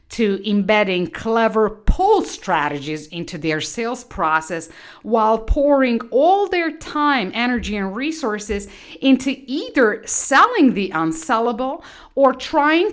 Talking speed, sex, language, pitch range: 110 wpm, female, English, 185-280 Hz